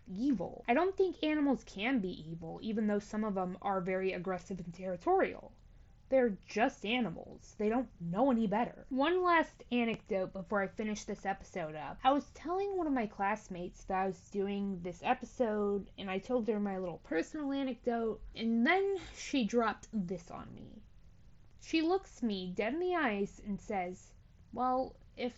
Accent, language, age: American, English, 20-39